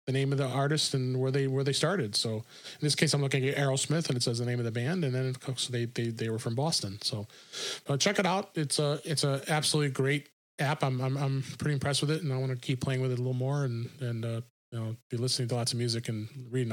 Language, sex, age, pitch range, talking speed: English, male, 30-49, 130-155 Hz, 285 wpm